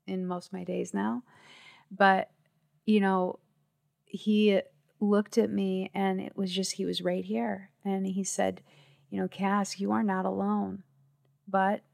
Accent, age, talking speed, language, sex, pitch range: American, 30-49, 160 wpm, English, female, 175-200 Hz